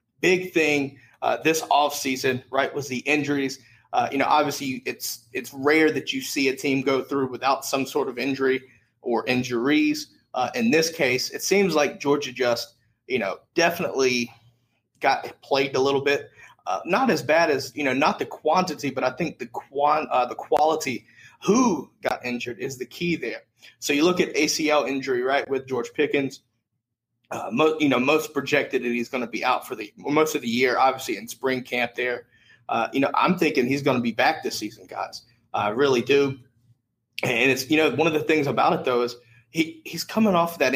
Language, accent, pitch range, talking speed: English, American, 125-155 Hz, 205 wpm